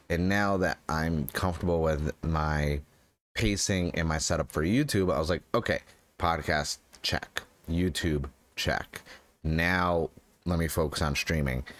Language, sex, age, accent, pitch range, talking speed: English, male, 30-49, American, 75-95 Hz, 135 wpm